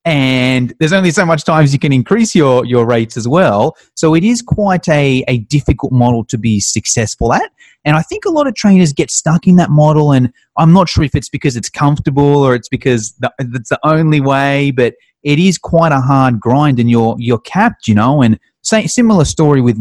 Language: English